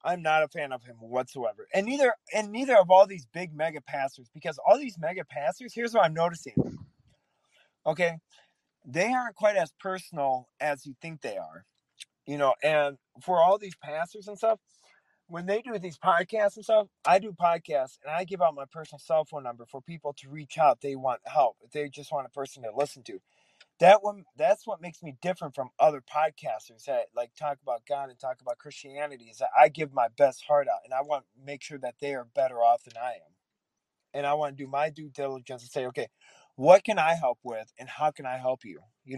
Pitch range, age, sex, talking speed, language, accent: 135-175 Hz, 30-49, male, 220 wpm, English, American